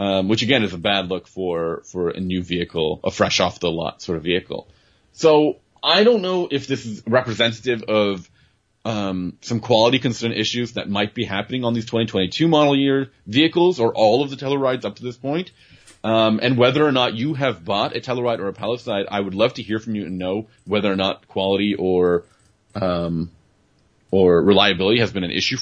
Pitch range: 100-135 Hz